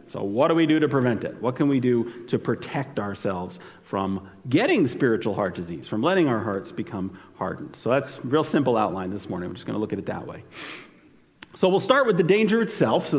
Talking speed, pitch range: 230 wpm, 125-190 Hz